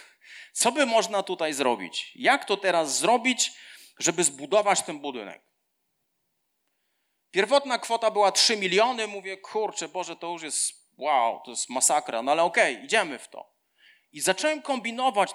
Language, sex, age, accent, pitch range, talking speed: Polish, male, 40-59, native, 175-215 Hz, 145 wpm